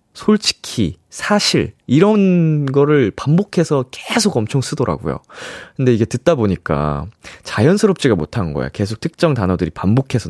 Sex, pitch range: male, 95-160 Hz